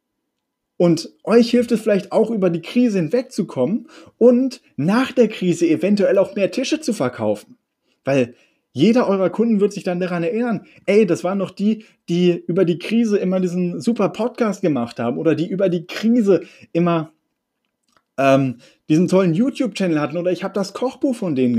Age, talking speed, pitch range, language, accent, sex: 30-49, 170 wpm, 160-220 Hz, German, German, male